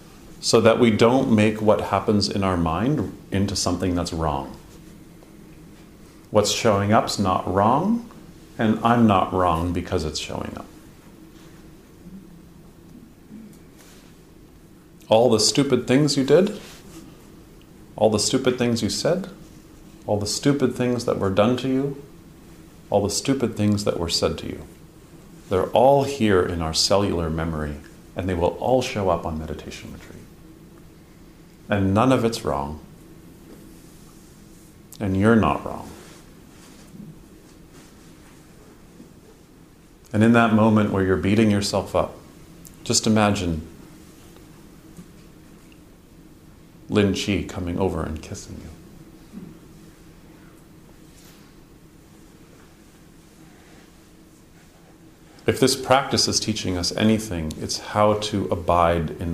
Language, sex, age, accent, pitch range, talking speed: English, male, 40-59, American, 95-130 Hz, 115 wpm